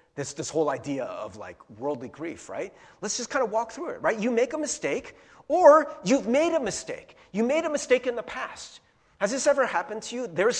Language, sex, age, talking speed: English, male, 40-59, 225 wpm